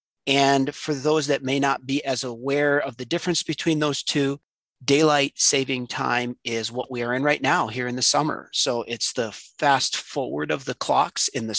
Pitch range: 120-145 Hz